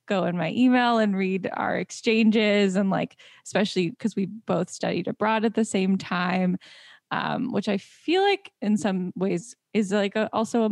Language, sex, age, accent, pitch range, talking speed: English, female, 10-29, American, 185-230 Hz, 180 wpm